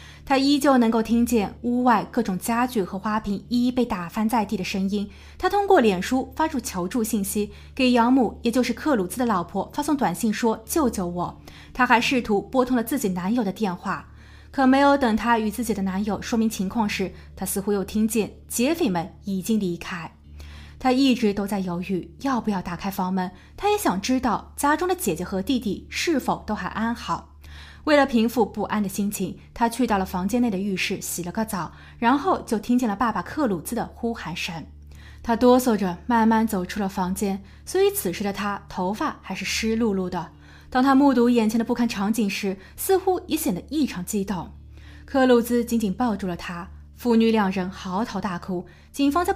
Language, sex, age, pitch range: Chinese, female, 20-39, 190-245 Hz